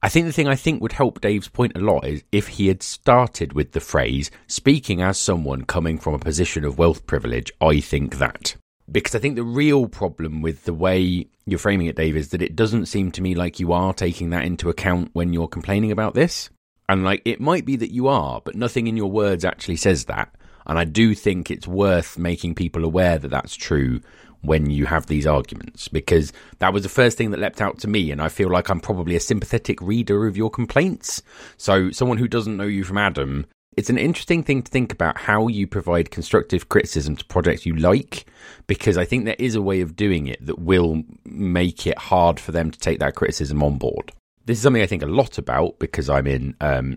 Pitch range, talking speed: 75-105 Hz, 230 wpm